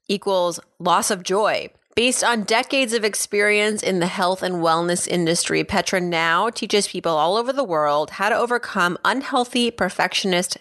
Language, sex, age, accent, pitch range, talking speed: English, female, 30-49, American, 175-235 Hz, 160 wpm